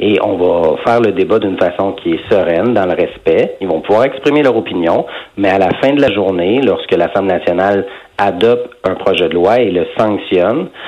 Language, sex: French, male